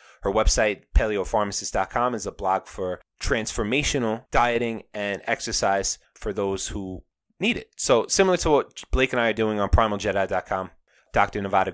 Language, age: English, 20-39